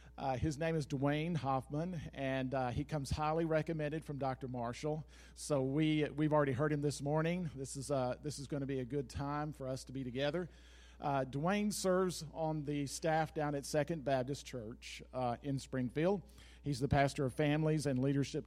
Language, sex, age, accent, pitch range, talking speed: English, male, 50-69, American, 125-160 Hz, 195 wpm